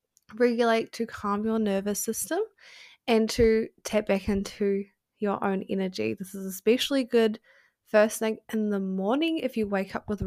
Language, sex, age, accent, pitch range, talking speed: English, female, 10-29, Australian, 195-230 Hz, 165 wpm